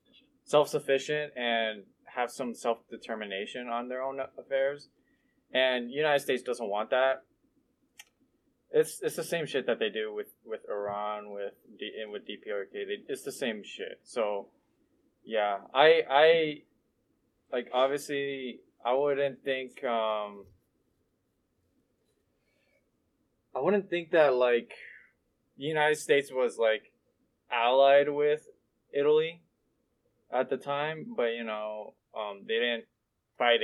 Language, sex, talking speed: English, male, 125 wpm